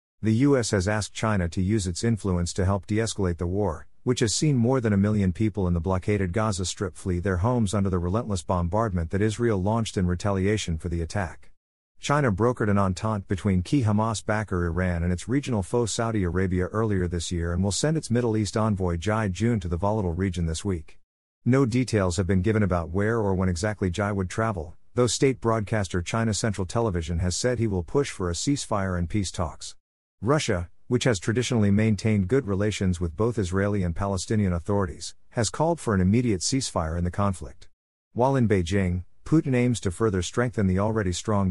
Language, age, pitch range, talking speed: English, 50-69, 90-110 Hz, 200 wpm